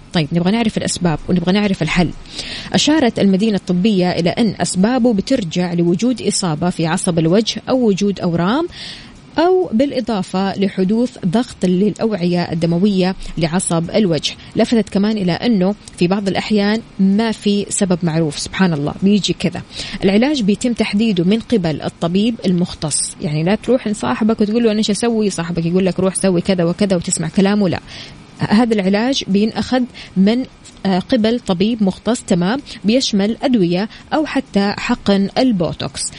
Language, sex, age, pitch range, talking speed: Arabic, female, 20-39, 180-225 Hz, 140 wpm